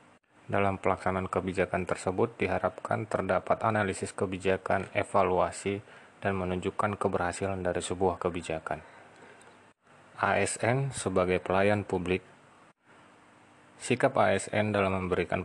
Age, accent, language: 20-39, native, Indonesian